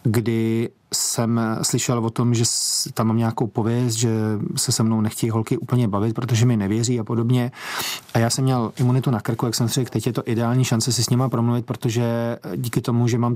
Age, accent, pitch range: 30-49, native, 115-125 Hz